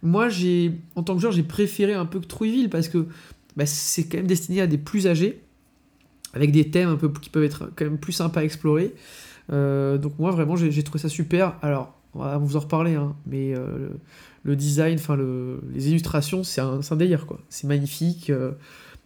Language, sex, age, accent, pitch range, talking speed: French, male, 20-39, French, 145-175 Hz, 215 wpm